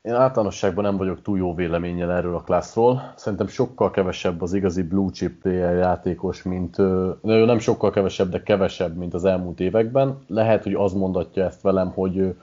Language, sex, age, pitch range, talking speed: Hungarian, male, 30-49, 90-110 Hz, 175 wpm